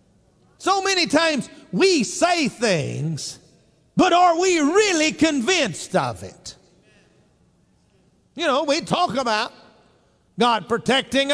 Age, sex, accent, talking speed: 50-69, male, American, 105 wpm